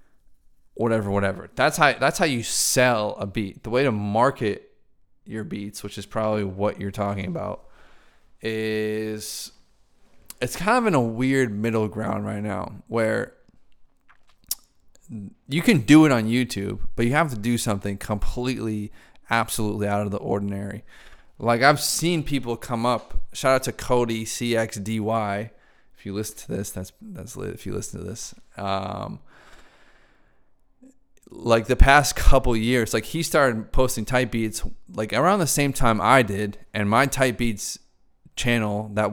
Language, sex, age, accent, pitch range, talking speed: English, male, 20-39, American, 105-125 Hz, 155 wpm